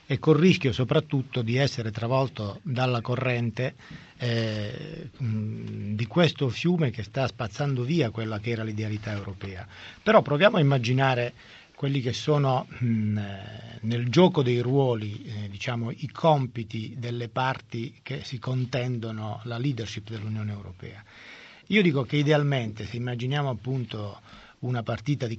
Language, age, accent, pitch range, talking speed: Italian, 40-59, native, 115-145 Hz, 130 wpm